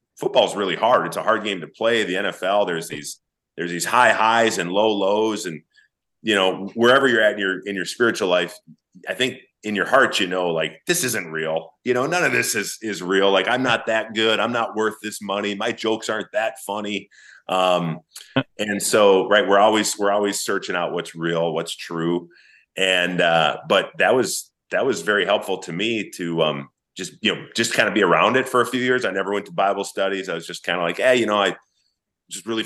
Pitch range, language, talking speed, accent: 85-105 Hz, English, 230 wpm, American